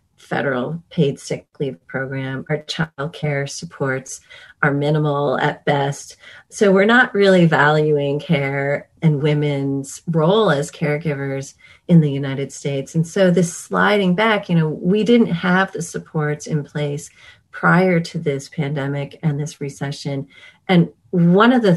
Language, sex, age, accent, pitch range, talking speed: English, female, 40-59, American, 145-180 Hz, 145 wpm